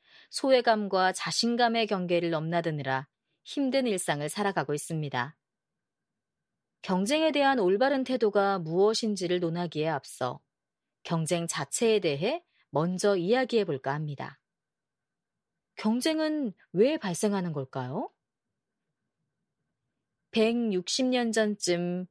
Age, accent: 30-49, native